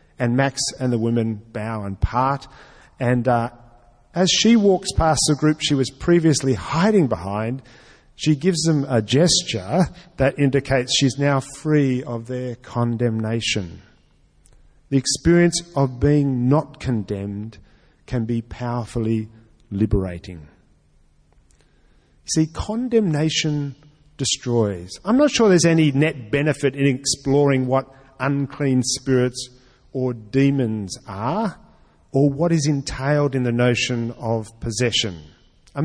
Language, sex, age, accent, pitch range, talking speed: English, male, 50-69, Australian, 115-150 Hz, 120 wpm